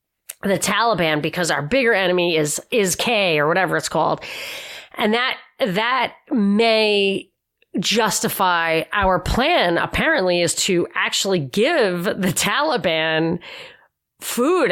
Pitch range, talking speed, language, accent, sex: 170-220 Hz, 115 wpm, English, American, female